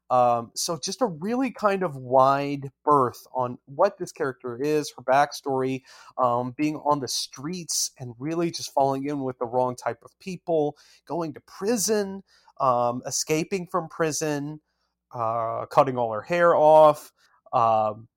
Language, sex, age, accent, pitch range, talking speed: English, male, 30-49, American, 125-155 Hz, 150 wpm